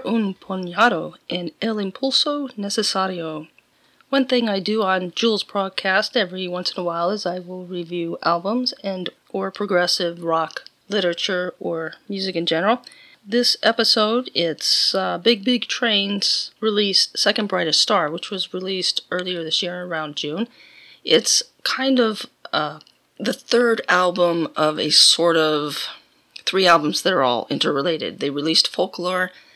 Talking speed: 145 wpm